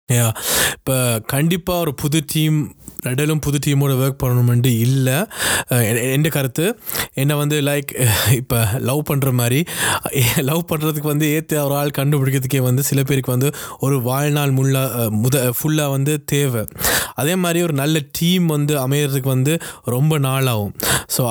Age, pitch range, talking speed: 20-39, 125-150 Hz, 140 wpm